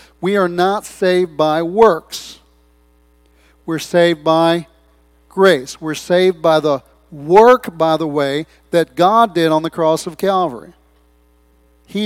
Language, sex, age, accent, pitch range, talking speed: English, male, 40-59, American, 130-185 Hz, 135 wpm